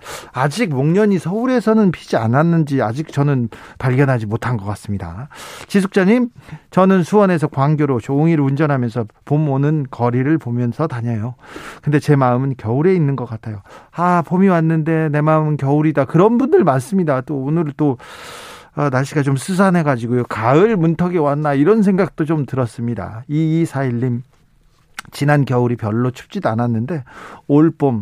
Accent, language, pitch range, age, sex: native, Korean, 120-165 Hz, 40-59, male